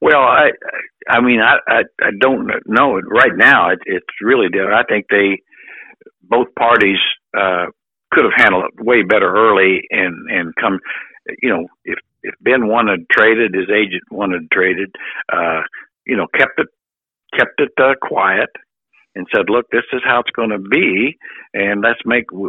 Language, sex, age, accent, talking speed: English, male, 60-79, American, 170 wpm